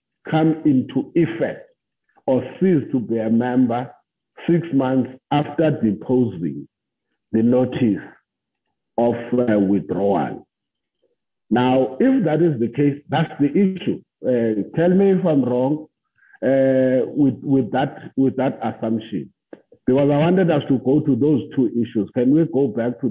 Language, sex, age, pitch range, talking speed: English, male, 50-69, 120-165 Hz, 140 wpm